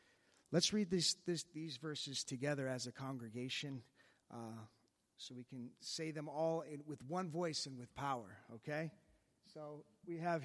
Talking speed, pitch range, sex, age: 145 wpm, 150-205 Hz, male, 30-49